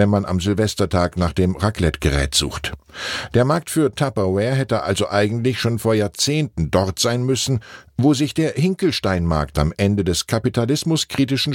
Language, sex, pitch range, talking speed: German, male, 90-120 Hz, 150 wpm